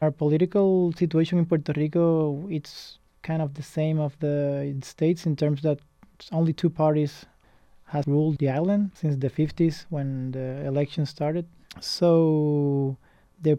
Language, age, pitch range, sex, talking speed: English, 20-39, 145-165 Hz, male, 145 wpm